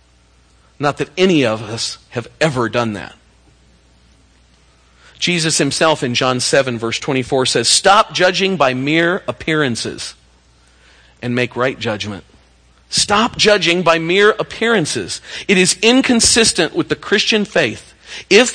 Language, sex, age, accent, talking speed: English, male, 40-59, American, 125 wpm